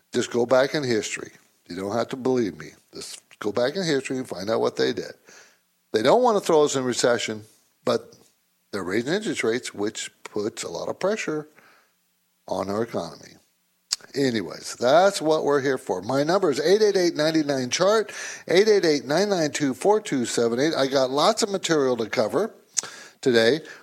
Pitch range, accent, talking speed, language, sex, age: 130-215 Hz, American, 160 wpm, English, male, 60-79